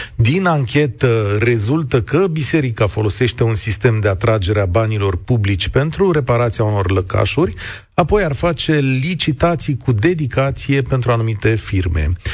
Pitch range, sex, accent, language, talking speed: 105-145 Hz, male, native, Romanian, 125 wpm